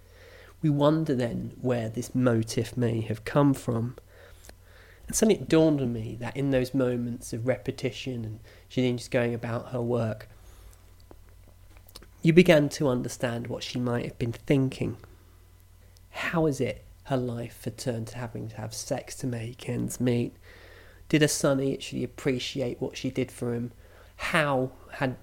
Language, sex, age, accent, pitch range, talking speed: English, male, 30-49, British, 100-130 Hz, 160 wpm